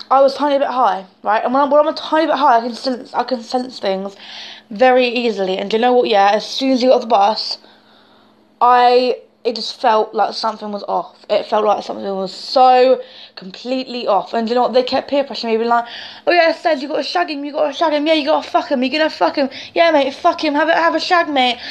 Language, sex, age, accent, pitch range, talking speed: English, female, 20-39, British, 235-280 Hz, 275 wpm